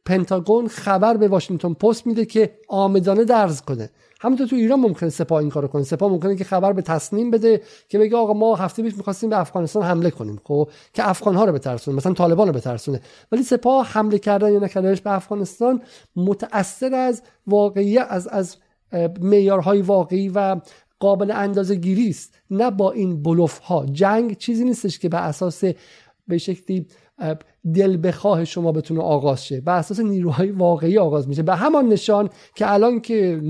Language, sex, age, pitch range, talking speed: Persian, male, 50-69, 175-225 Hz, 165 wpm